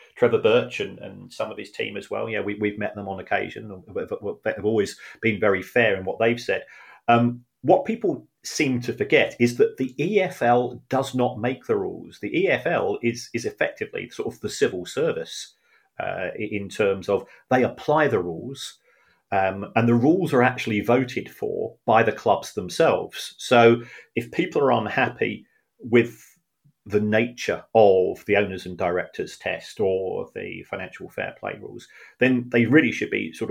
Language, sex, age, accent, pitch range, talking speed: English, male, 40-59, British, 105-135 Hz, 175 wpm